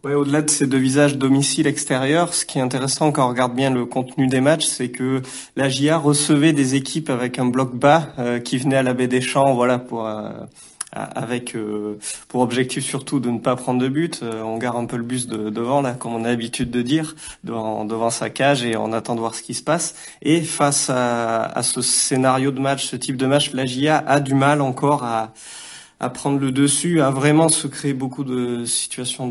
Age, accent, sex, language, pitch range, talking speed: 30-49, French, male, French, 120-140 Hz, 230 wpm